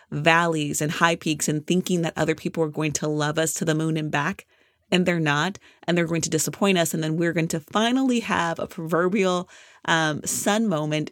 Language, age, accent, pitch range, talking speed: English, 30-49, American, 160-200 Hz, 215 wpm